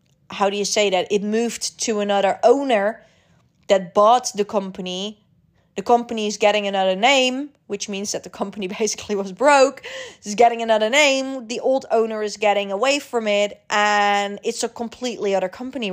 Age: 20-39